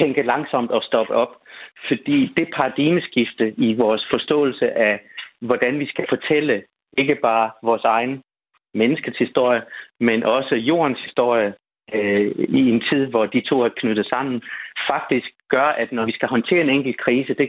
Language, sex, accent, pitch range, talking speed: Danish, male, native, 115-145 Hz, 160 wpm